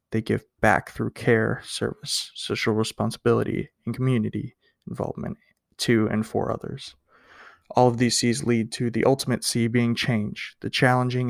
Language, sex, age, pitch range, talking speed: English, male, 20-39, 110-125 Hz, 150 wpm